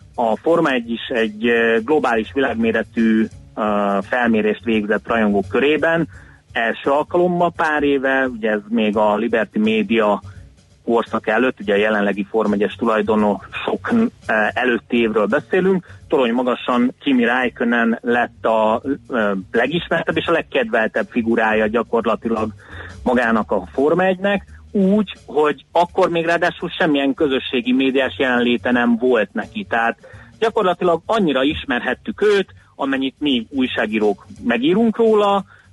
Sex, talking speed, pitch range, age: male, 120 wpm, 110-175 Hz, 30-49